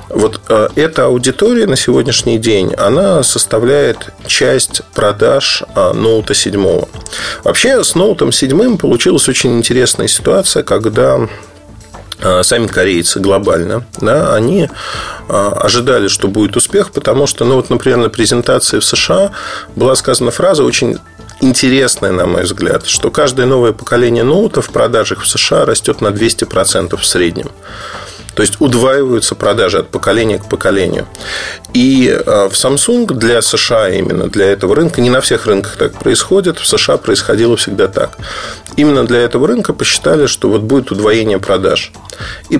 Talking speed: 140 wpm